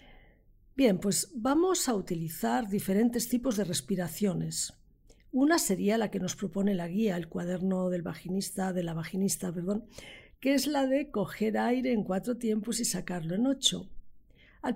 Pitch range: 190-245 Hz